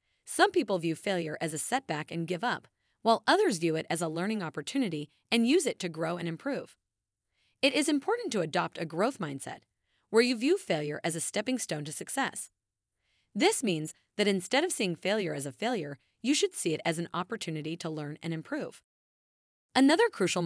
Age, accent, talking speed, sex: 30-49, American, 195 wpm, female